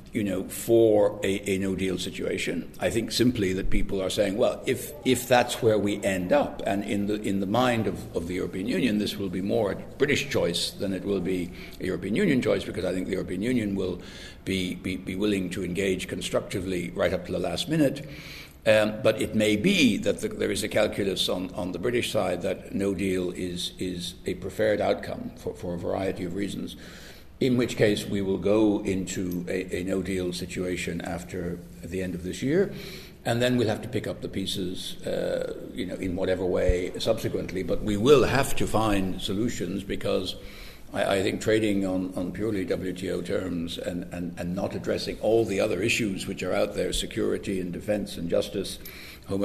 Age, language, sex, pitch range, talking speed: 60-79, English, male, 90-110 Hz, 205 wpm